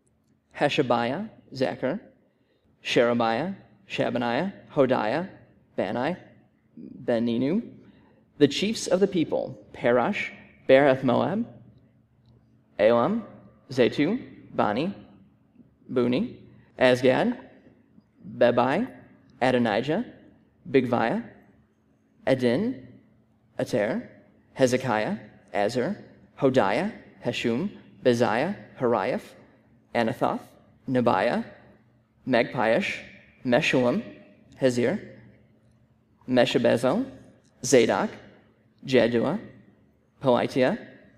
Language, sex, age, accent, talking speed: English, male, 30-49, American, 60 wpm